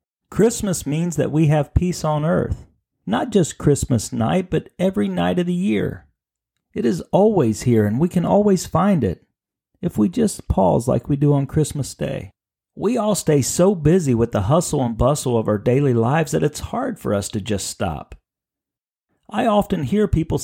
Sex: male